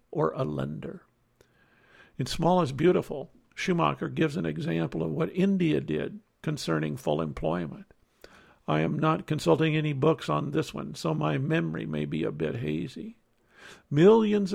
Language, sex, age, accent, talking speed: English, male, 60-79, American, 150 wpm